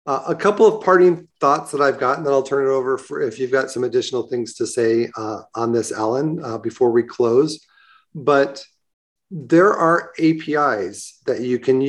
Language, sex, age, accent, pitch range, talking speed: English, male, 40-59, American, 120-170 Hz, 190 wpm